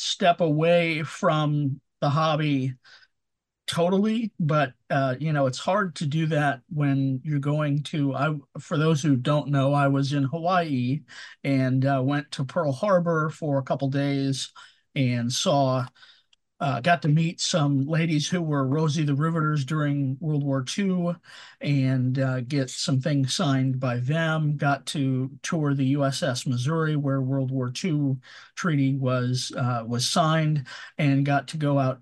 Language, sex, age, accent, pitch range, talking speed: English, male, 40-59, American, 135-165 Hz, 155 wpm